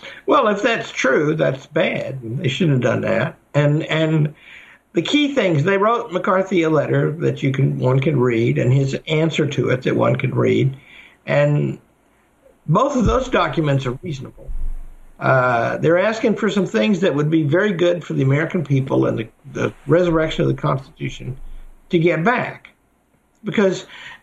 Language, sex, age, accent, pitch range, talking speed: English, male, 60-79, American, 135-185 Hz, 170 wpm